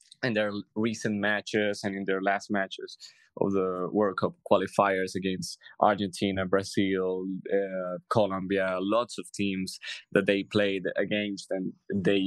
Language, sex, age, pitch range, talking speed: English, male, 20-39, 100-115 Hz, 135 wpm